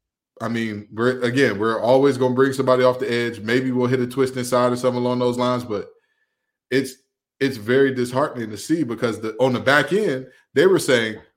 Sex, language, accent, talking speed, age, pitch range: male, English, American, 205 wpm, 20-39, 105-125 Hz